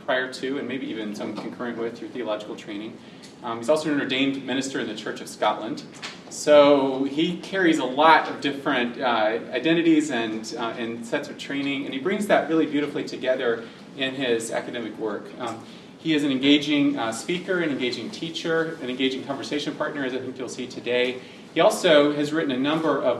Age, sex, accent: 30-49, male, American